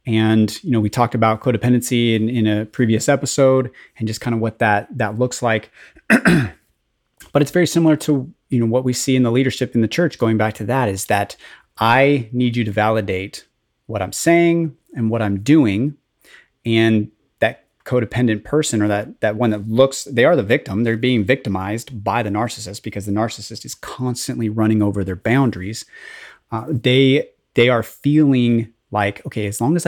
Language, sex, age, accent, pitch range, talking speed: English, male, 30-49, American, 105-130 Hz, 190 wpm